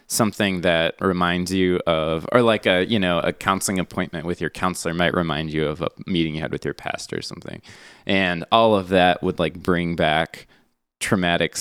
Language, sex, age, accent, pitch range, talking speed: English, male, 20-39, American, 80-100 Hz, 195 wpm